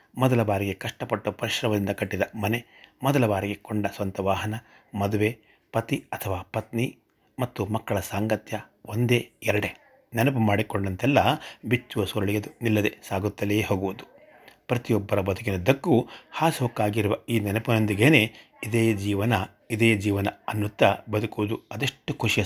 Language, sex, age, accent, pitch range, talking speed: Kannada, male, 30-49, native, 100-115 Hz, 110 wpm